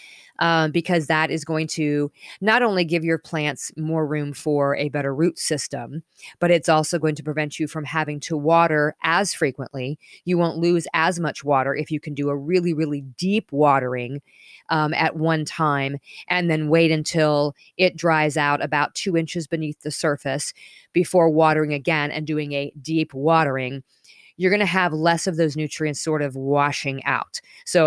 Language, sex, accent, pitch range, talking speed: English, female, American, 145-175 Hz, 180 wpm